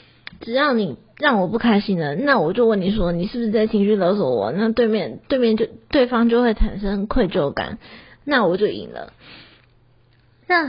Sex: female